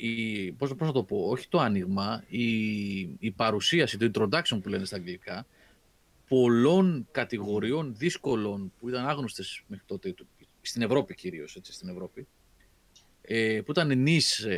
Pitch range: 100-150 Hz